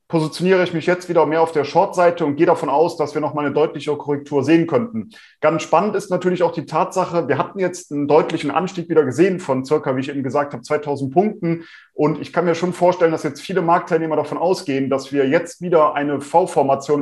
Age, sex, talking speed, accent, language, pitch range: 30-49, male, 220 wpm, German, German, 145-170 Hz